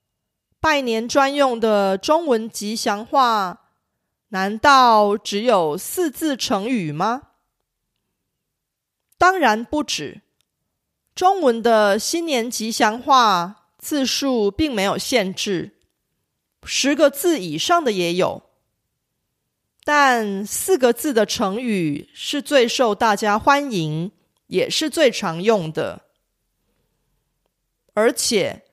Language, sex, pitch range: Korean, female, 205-275 Hz